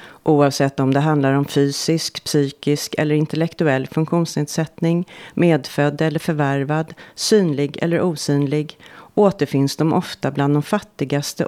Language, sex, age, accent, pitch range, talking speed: Swedish, female, 40-59, native, 140-165 Hz, 115 wpm